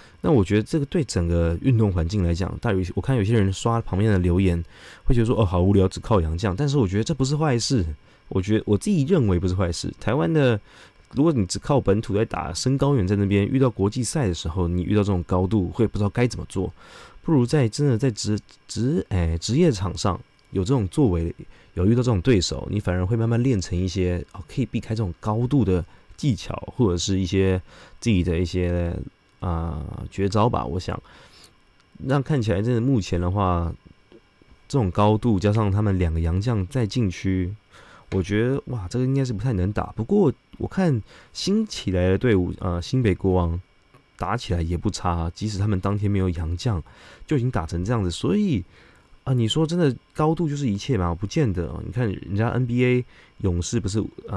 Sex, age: male, 20-39